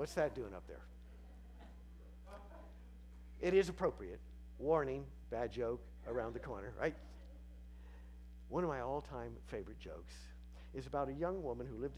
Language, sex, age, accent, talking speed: English, male, 50-69, American, 140 wpm